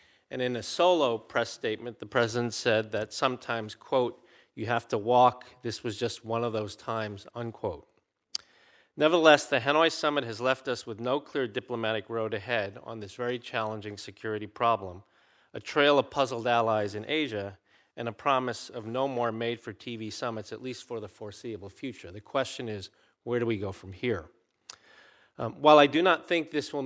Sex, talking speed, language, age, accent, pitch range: male, 180 wpm, English, 40-59, American, 110-140 Hz